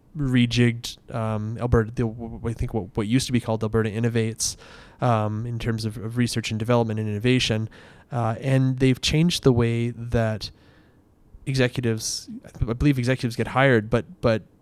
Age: 20-39